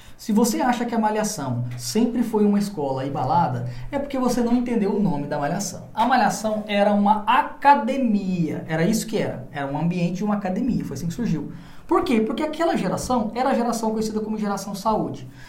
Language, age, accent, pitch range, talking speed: Portuguese, 20-39, Brazilian, 165-240 Hz, 195 wpm